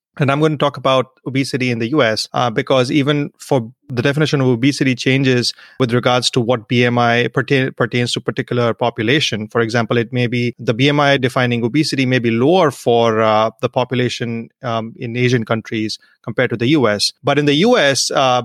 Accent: Indian